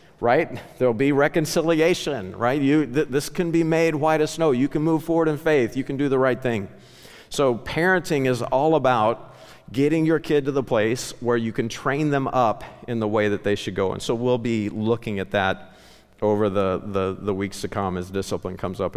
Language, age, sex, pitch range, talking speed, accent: English, 50-69, male, 105-145 Hz, 215 wpm, American